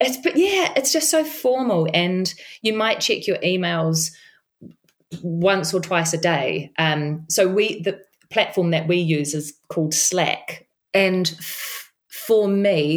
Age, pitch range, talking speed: 30-49, 150-180 Hz, 155 wpm